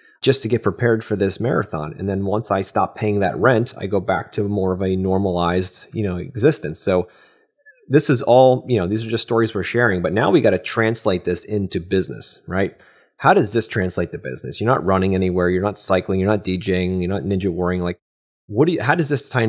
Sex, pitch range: male, 95-110 Hz